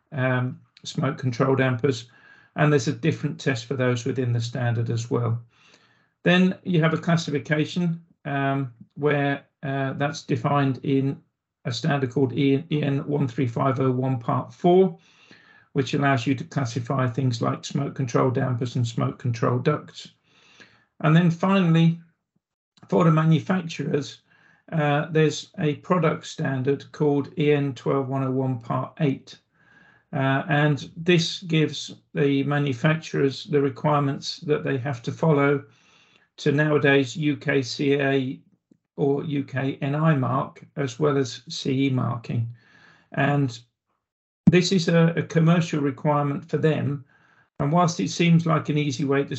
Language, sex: English, male